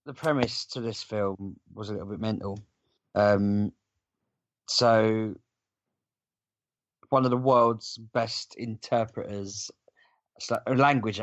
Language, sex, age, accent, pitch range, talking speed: English, male, 20-39, British, 100-125 Hz, 100 wpm